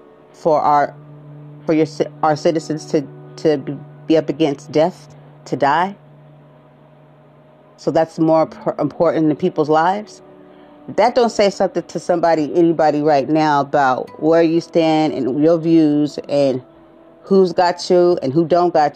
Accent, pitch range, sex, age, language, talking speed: American, 150-195 Hz, female, 40-59, English, 145 wpm